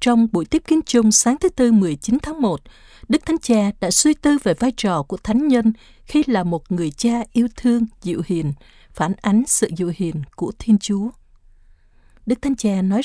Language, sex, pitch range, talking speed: Vietnamese, female, 180-245 Hz, 200 wpm